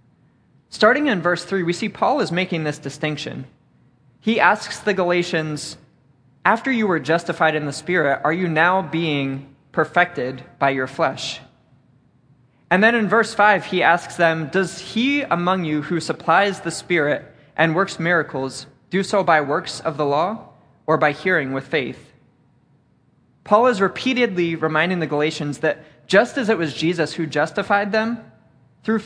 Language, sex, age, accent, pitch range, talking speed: English, male, 20-39, American, 140-180 Hz, 160 wpm